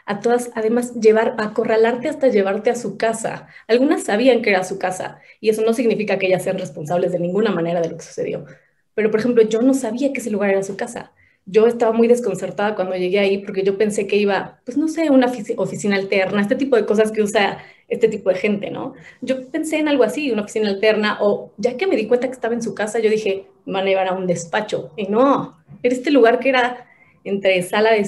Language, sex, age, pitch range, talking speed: Spanish, female, 30-49, 190-235 Hz, 235 wpm